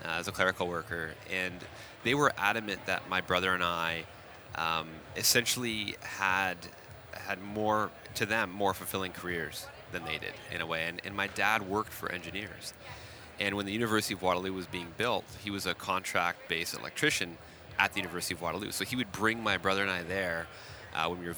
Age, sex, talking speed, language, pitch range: 30-49, male, 195 wpm, English, 85-105 Hz